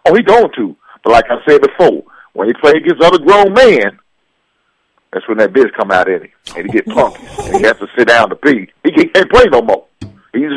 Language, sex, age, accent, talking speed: English, male, 50-69, American, 235 wpm